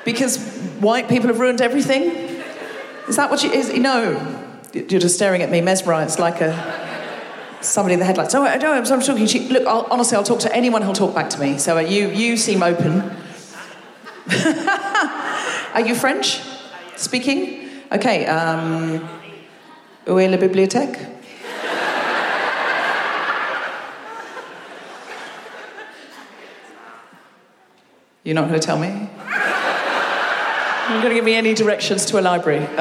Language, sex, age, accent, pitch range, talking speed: English, female, 40-59, British, 195-275 Hz, 135 wpm